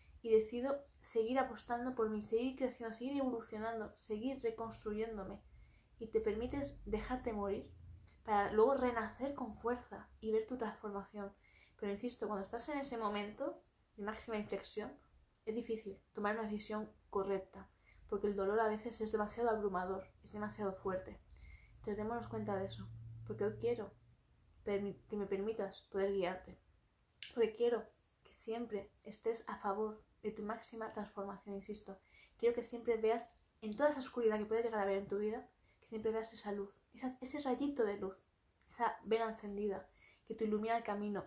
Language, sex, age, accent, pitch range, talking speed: Spanish, female, 20-39, Spanish, 200-230 Hz, 165 wpm